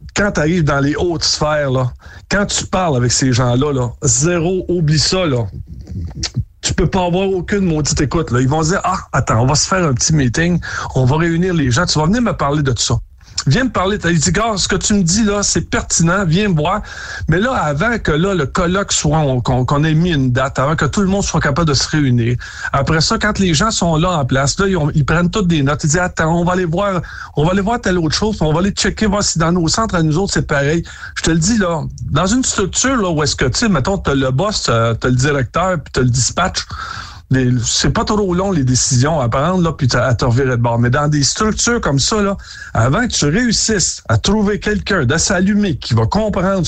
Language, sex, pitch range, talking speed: French, male, 130-185 Hz, 255 wpm